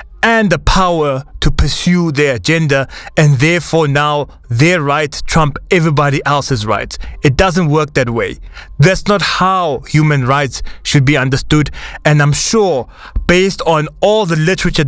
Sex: male